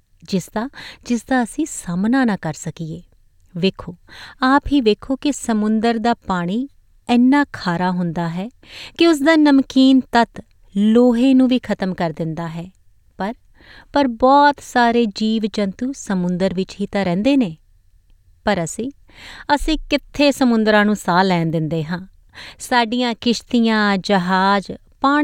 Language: Punjabi